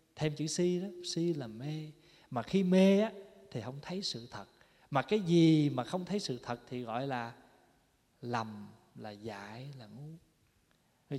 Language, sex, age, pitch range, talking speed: Vietnamese, male, 20-39, 120-165 Hz, 170 wpm